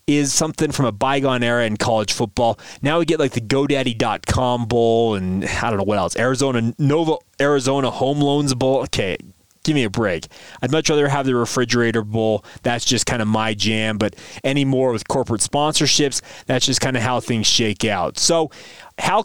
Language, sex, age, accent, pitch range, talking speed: English, male, 30-49, American, 120-155 Hz, 195 wpm